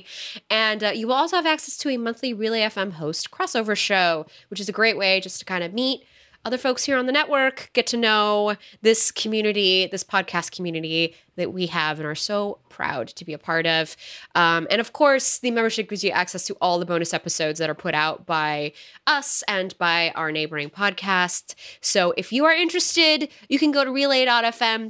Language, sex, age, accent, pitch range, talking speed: English, female, 20-39, American, 180-245 Hz, 205 wpm